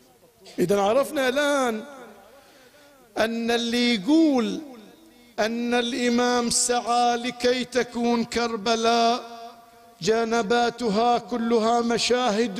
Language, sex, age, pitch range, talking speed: Arabic, male, 50-69, 215-265 Hz, 70 wpm